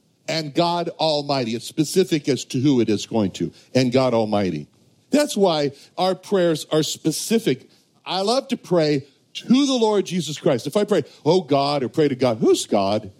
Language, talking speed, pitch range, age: English, 185 wpm, 130-185 Hz, 60-79